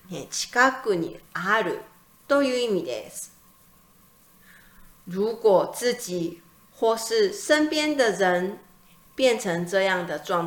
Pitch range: 180-275 Hz